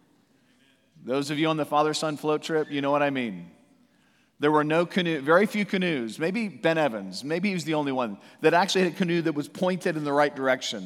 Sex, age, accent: male, 40-59, American